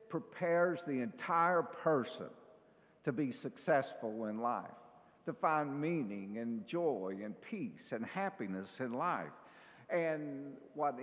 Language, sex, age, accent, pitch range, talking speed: English, male, 50-69, American, 120-170 Hz, 120 wpm